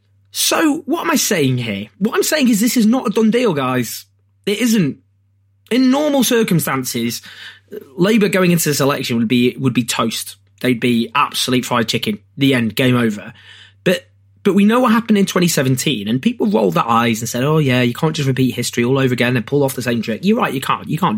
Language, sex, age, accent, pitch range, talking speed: English, male, 20-39, British, 120-190 Hz, 220 wpm